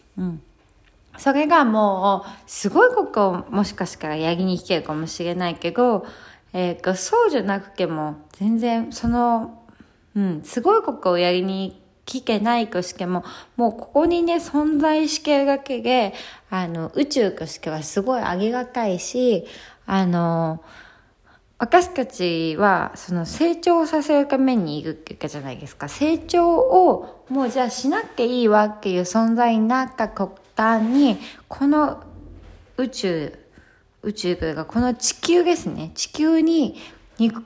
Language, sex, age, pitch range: Japanese, female, 20-39, 180-260 Hz